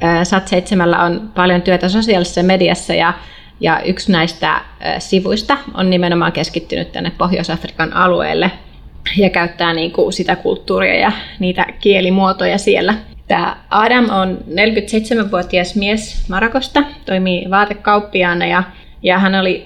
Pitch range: 180-210 Hz